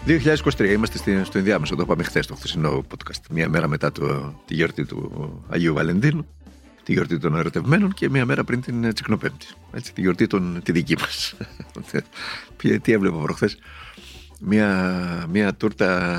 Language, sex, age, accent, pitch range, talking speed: Greek, male, 50-69, Spanish, 85-115 Hz, 150 wpm